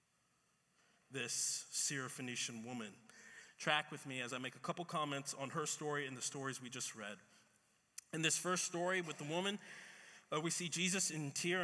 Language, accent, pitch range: English, American, 135-170 Hz